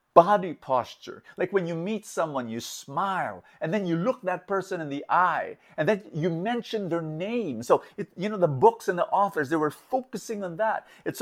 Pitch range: 140-215 Hz